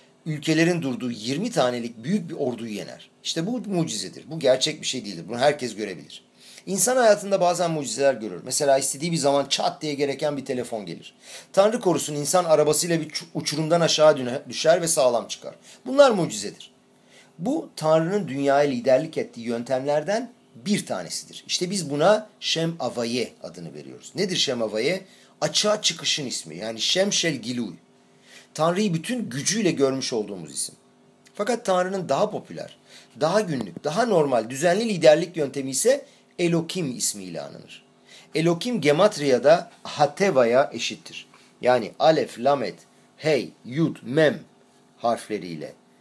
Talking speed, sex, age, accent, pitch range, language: 130 wpm, male, 40-59, native, 130-180 Hz, Turkish